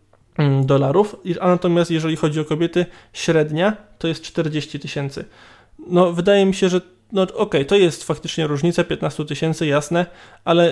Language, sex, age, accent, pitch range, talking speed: Polish, male, 20-39, native, 150-170 Hz, 155 wpm